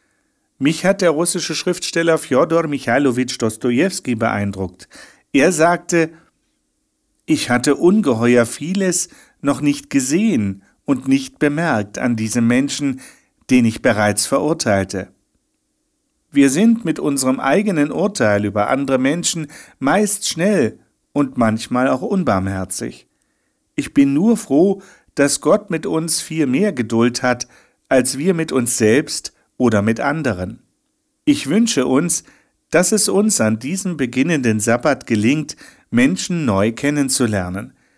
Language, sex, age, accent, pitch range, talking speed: German, male, 50-69, German, 120-195 Hz, 120 wpm